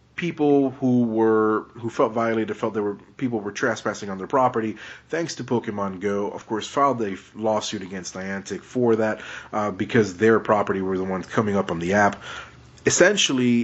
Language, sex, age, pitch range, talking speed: English, male, 30-49, 105-130 Hz, 180 wpm